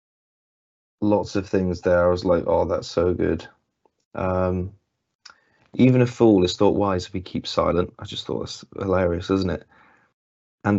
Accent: British